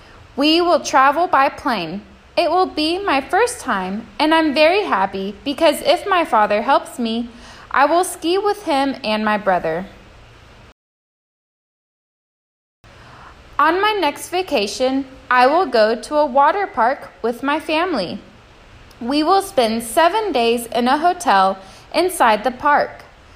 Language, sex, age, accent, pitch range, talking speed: Portuguese, female, 10-29, American, 215-315 Hz, 140 wpm